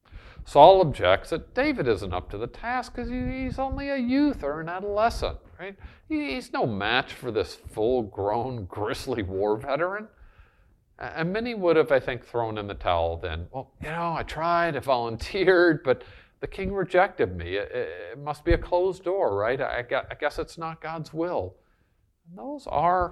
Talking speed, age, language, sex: 170 wpm, 50-69, English, male